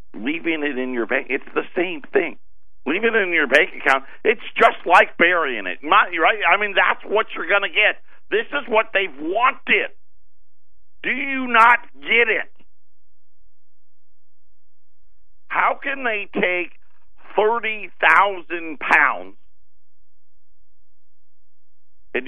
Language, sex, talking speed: English, male, 125 wpm